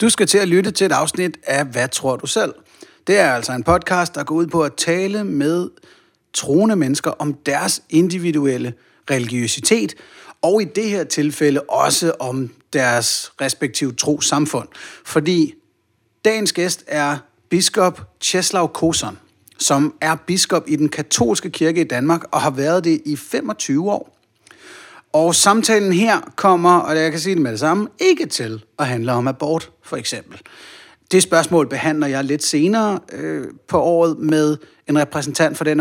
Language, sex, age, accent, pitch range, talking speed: Danish, male, 30-49, native, 140-175 Hz, 165 wpm